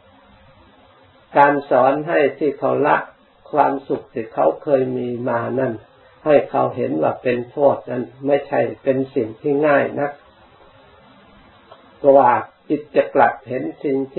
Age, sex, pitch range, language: 50-69, male, 130-145 Hz, Thai